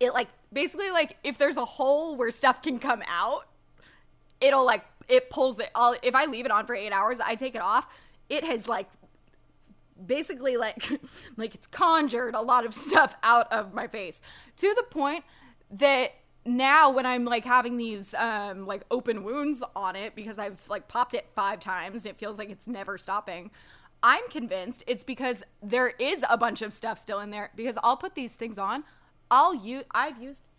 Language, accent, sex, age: English, American, female, 20-39